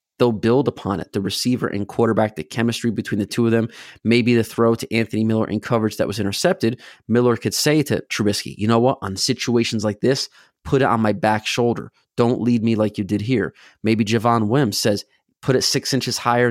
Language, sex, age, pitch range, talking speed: English, male, 30-49, 105-120 Hz, 220 wpm